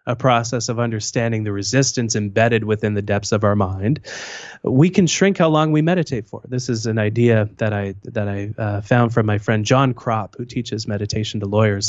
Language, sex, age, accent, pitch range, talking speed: English, male, 30-49, American, 110-150 Hz, 205 wpm